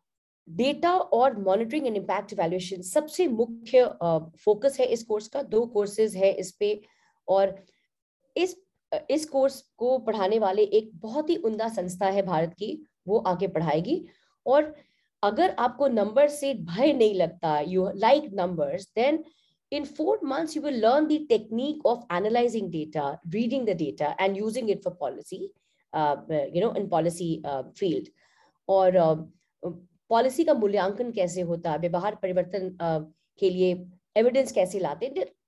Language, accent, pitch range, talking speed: Hindi, native, 180-275 Hz, 125 wpm